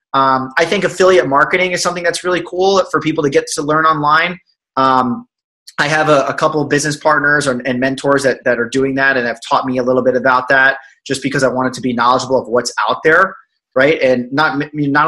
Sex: male